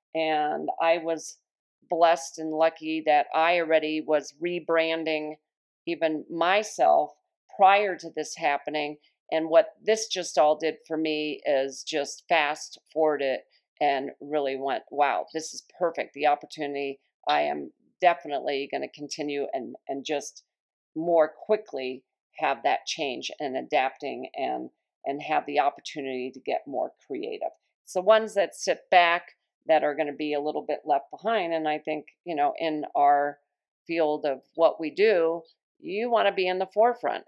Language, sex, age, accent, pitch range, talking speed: English, female, 40-59, American, 150-170 Hz, 160 wpm